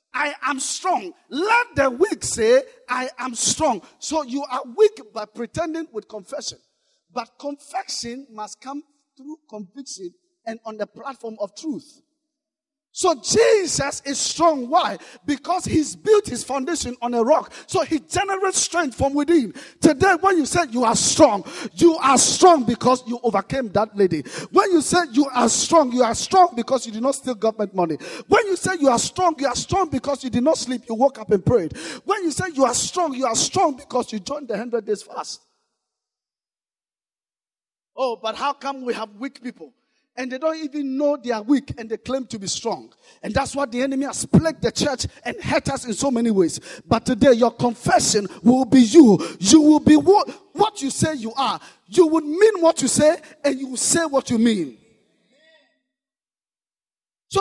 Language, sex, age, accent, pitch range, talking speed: English, male, 50-69, South African, 240-330 Hz, 190 wpm